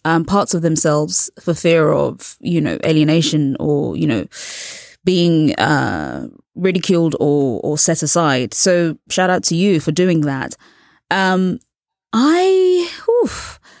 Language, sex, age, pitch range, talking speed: English, female, 20-39, 165-235 Hz, 135 wpm